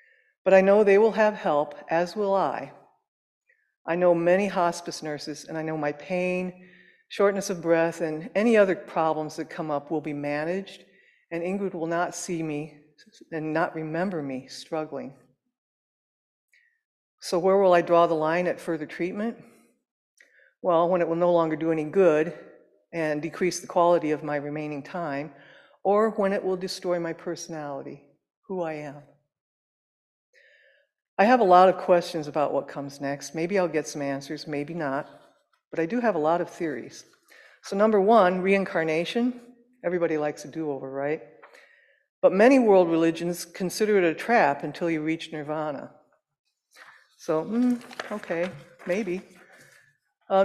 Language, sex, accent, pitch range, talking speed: English, female, American, 155-200 Hz, 155 wpm